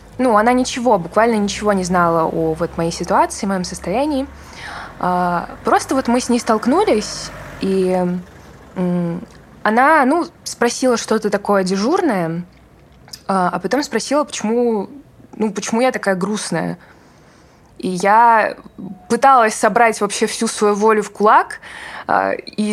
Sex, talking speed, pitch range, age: female, 120 wpm, 190-235 Hz, 20-39